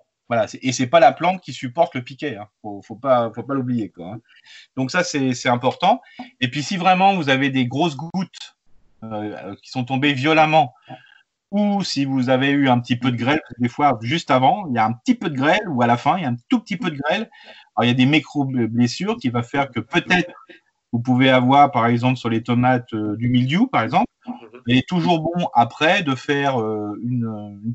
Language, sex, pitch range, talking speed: French, male, 120-145 Hz, 225 wpm